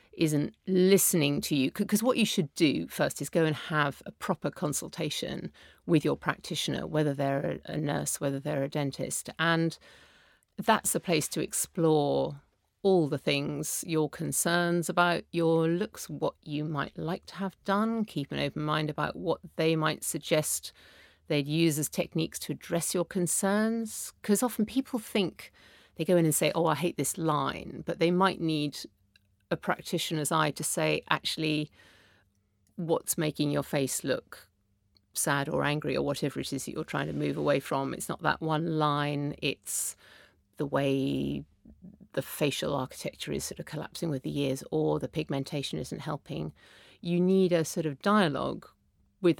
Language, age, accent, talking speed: English, 50-69, British, 170 wpm